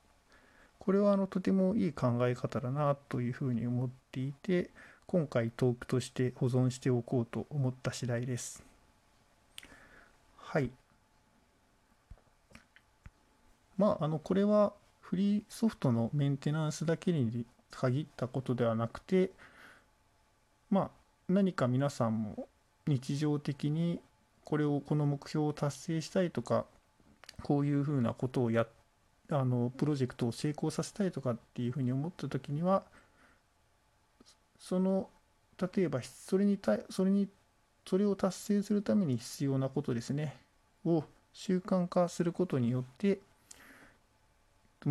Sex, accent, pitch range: male, native, 125-170 Hz